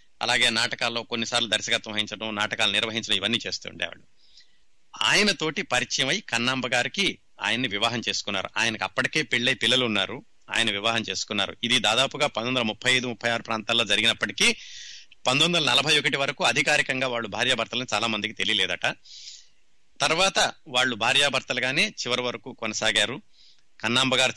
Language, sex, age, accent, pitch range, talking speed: Telugu, male, 30-49, native, 110-130 Hz, 115 wpm